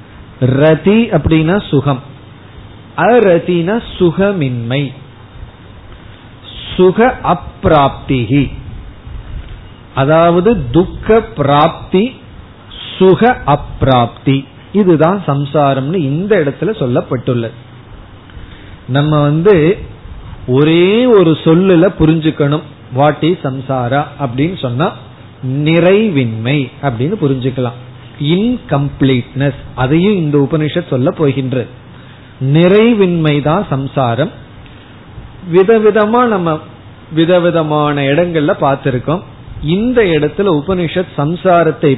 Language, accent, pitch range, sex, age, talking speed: Tamil, native, 120-165 Hz, male, 40-59, 45 wpm